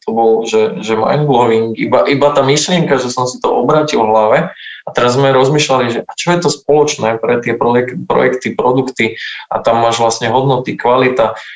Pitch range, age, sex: 110-130 Hz, 20-39, male